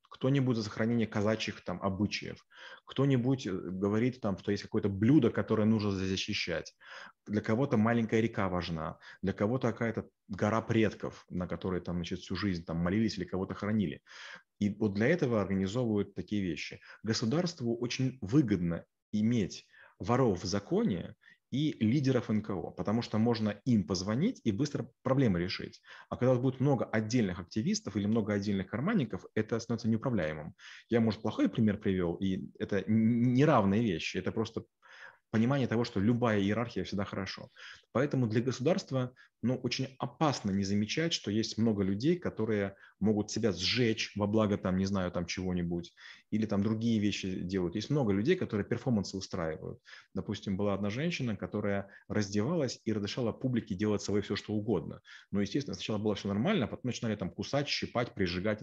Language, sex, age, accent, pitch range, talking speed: Russian, male, 30-49, native, 100-120 Hz, 160 wpm